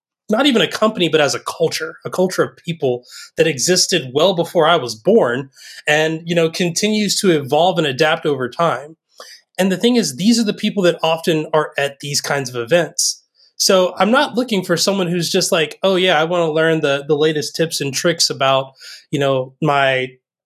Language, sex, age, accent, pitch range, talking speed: English, male, 20-39, American, 145-175 Hz, 205 wpm